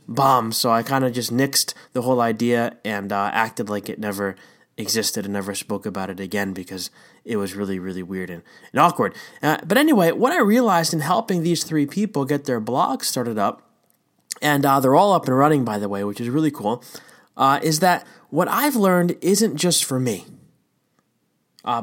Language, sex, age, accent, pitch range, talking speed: English, male, 20-39, American, 125-165 Hz, 200 wpm